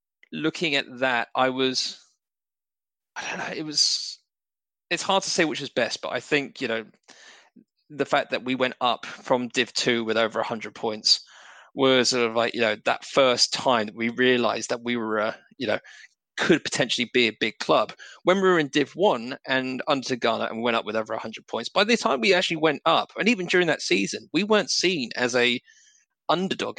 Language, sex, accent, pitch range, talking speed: English, male, British, 120-160 Hz, 210 wpm